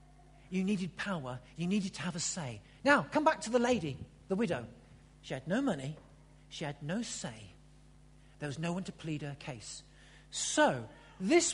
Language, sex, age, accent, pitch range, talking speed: English, male, 50-69, British, 155-255 Hz, 180 wpm